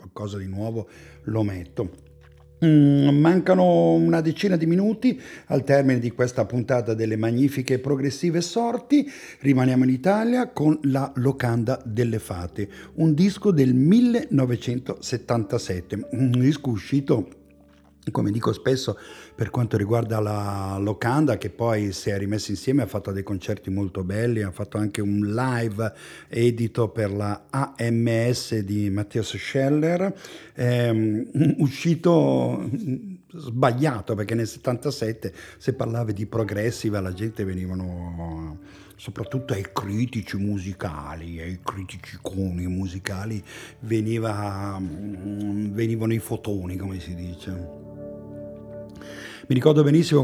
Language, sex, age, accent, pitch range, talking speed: English, male, 50-69, Italian, 100-130 Hz, 115 wpm